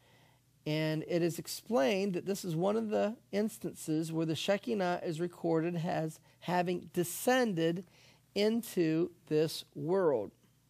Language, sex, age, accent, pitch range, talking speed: English, male, 40-59, American, 150-185 Hz, 125 wpm